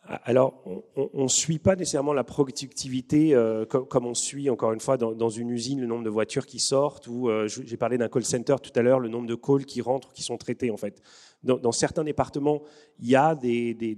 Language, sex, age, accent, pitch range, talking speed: French, male, 30-49, French, 115-140 Hz, 240 wpm